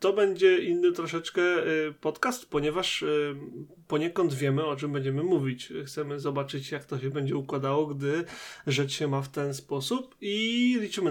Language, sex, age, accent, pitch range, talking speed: Polish, male, 30-49, native, 140-165 Hz, 150 wpm